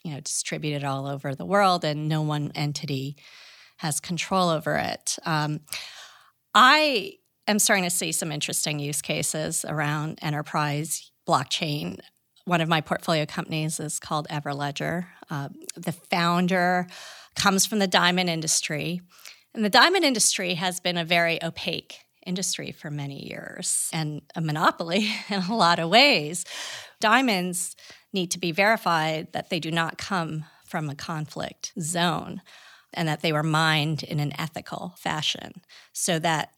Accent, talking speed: American, 150 wpm